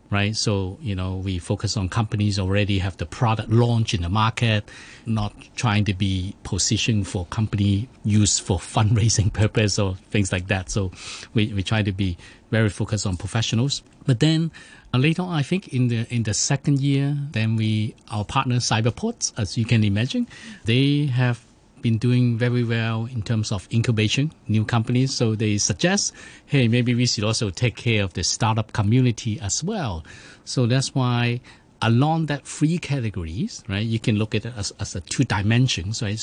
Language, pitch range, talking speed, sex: English, 105-125 Hz, 180 wpm, male